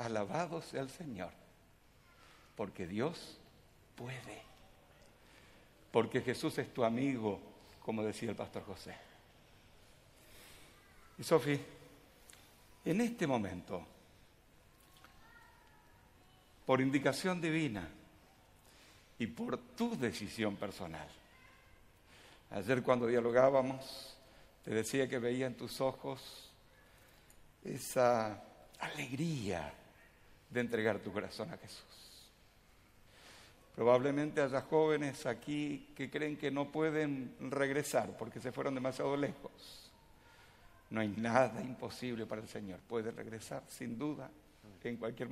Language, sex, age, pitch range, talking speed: Spanish, male, 70-89, 105-140 Hz, 100 wpm